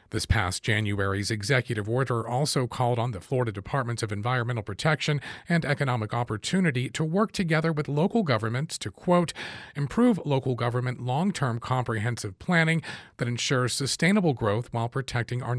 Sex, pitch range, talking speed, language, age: male, 110-150 Hz, 145 wpm, English, 40-59